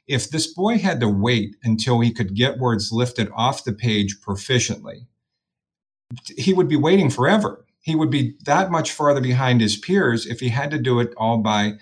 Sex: male